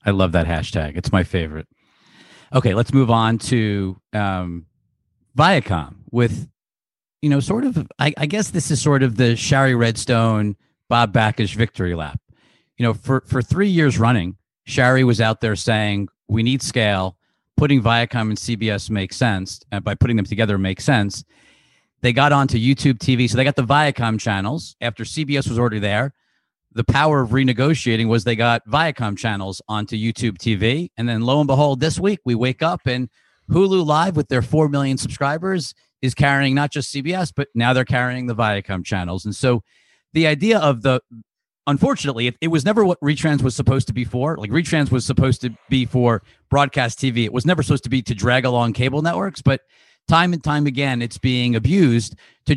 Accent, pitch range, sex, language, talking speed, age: American, 110-140 Hz, male, English, 190 wpm, 50-69